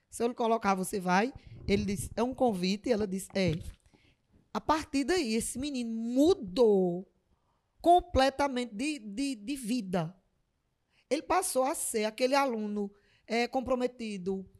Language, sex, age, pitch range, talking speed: Portuguese, female, 20-39, 210-285 Hz, 140 wpm